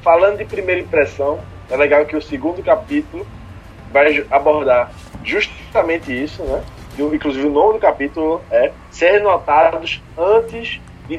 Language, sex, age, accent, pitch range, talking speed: Portuguese, male, 20-39, Brazilian, 125-160 Hz, 140 wpm